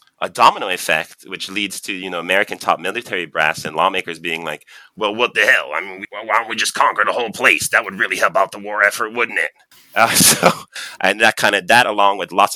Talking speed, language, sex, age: 240 wpm, English, male, 30-49